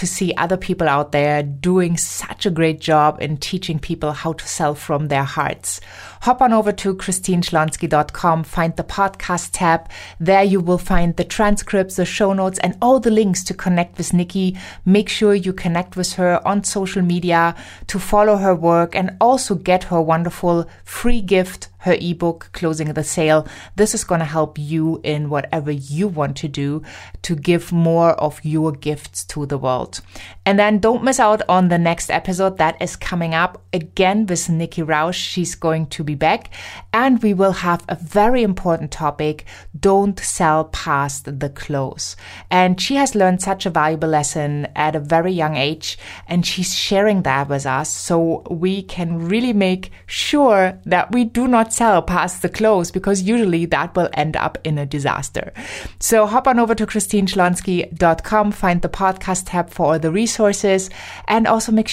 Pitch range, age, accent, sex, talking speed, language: 155-195 Hz, 20-39, German, female, 180 wpm, English